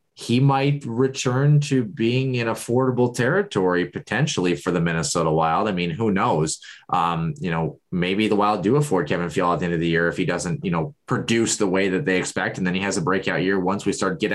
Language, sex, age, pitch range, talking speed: English, male, 20-39, 95-120 Hz, 230 wpm